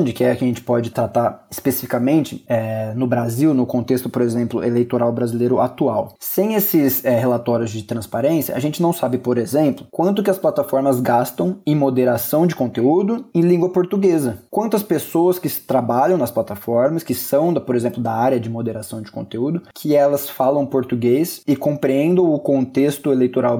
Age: 20-39